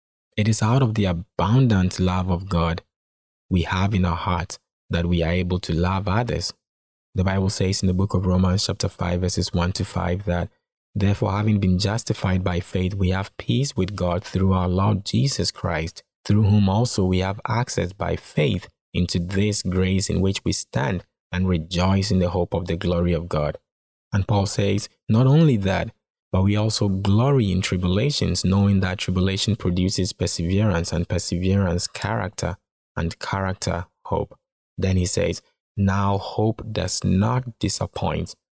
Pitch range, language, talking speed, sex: 85-100 Hz, English, 170 wpm, male